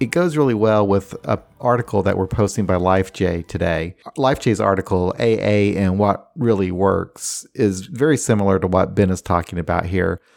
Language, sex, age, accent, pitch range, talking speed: English, male, 40-59, American, 95-115 Hz, 175 wpm